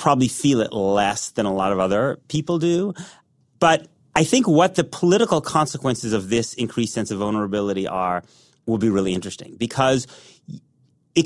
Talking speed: 165 wpm